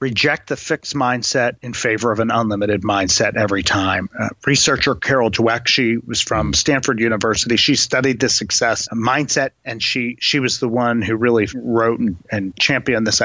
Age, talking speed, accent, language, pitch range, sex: 30-49, 175 wpm, American, English, 120-155 Hz, male